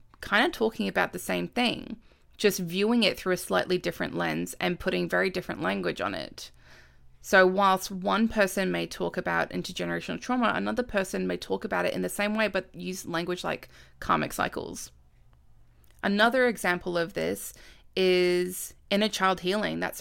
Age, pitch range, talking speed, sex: 20-39, 155-205 Hz, 170 wpm, female